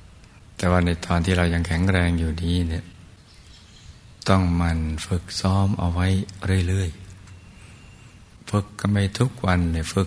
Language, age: Thai, 60-79